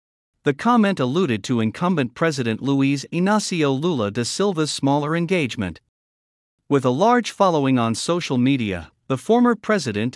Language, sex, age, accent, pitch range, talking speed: English, male, 50-69, American, 115-170 Hz, 135 wpm